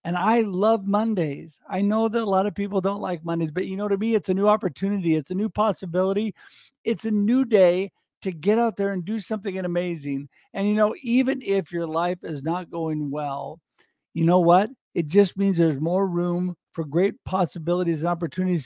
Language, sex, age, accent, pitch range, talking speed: English, male, 50-69, American, 165-205 Hz, 205 wpm